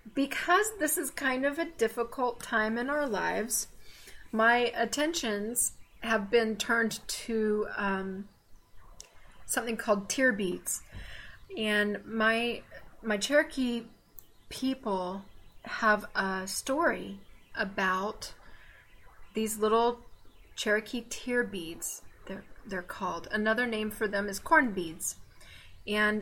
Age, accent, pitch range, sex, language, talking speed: 30-49, American, 200-245 Hz, female, English, 110 wpm